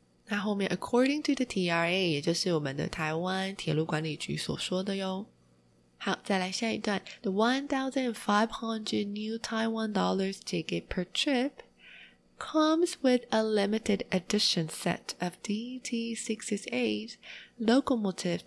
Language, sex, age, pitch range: Chinese, female, 20-39, 175-230 Hz